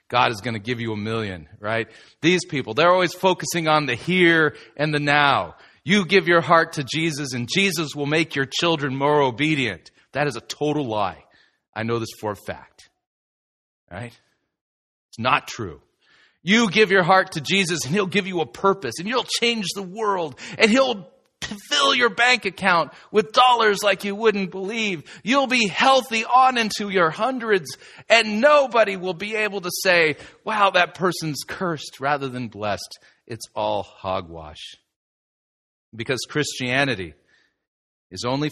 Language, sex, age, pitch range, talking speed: English, male, 40-59, 115-185 Hz, 165 wpm